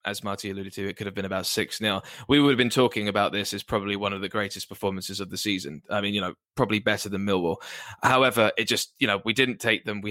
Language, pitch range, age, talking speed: English, 100-115 Hz, 10-29, 265 wpm